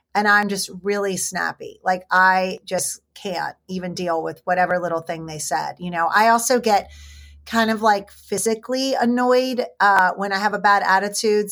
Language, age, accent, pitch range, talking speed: English, 30-49, American, 185-230 Hz, 175 wpm